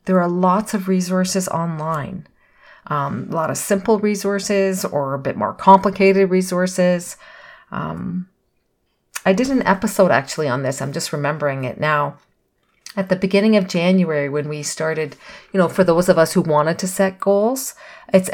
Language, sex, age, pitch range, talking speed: English, female, 40-59, 160-205 Hz, 165 wpm